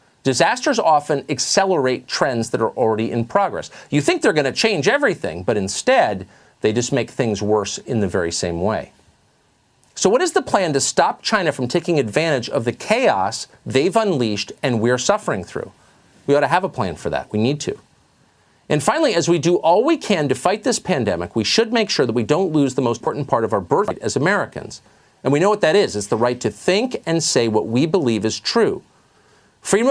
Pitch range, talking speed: 115-175 Hz, 215 wpm